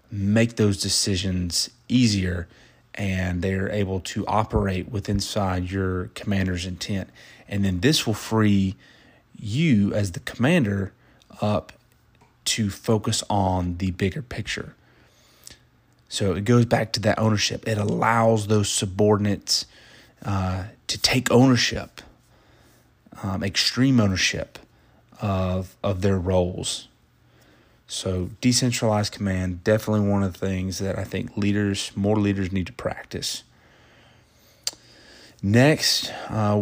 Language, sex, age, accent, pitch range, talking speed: English, male, 30-49, American, 95-110 Hz, 115 wpm